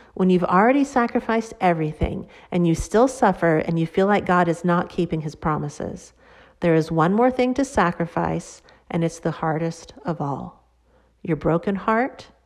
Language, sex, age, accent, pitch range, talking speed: English, female, 40-59, American, 155-195 Hz, 170 wpm